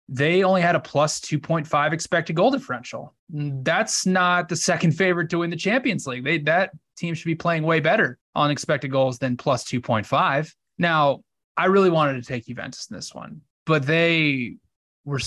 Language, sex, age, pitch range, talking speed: English, male, 20-39, 130-155 Hz, 175 wpm